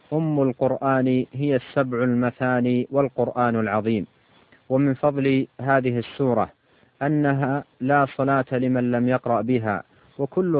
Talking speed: 110 wpm